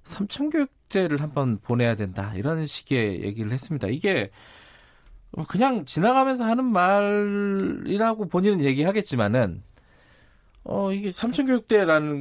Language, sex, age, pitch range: Korean, male, 40-59, 120-200 Hz